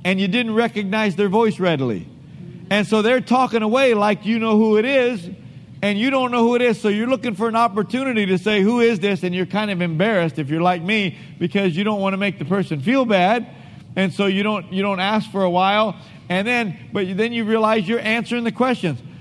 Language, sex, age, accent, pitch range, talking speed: English, male, 50-69, American, 175-235 Hz, 235 wpm